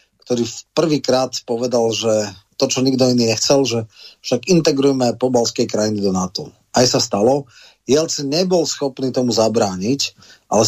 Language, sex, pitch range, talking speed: Slovak, male, 110-135 Hz, 145 wpm